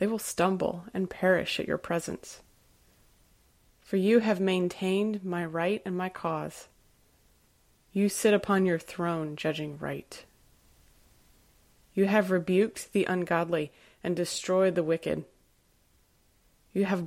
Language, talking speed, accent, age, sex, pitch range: English, 125 wpm, American, 30-49, female, 170-200 Hz